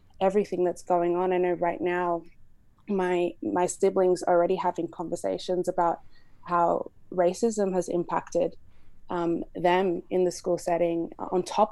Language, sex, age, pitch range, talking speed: English, female, 20-39, 170-185 Hz, 145 wpm